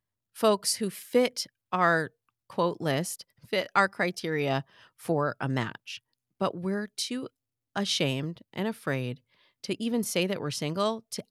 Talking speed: 135 wpm